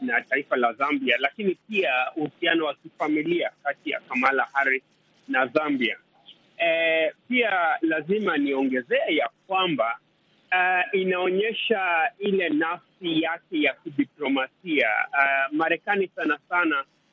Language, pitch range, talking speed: Swahili, 150-250 Hz, 110 wpm